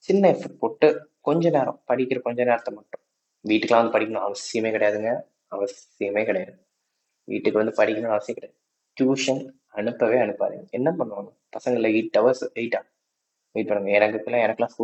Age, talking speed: 20-39, 140 wpm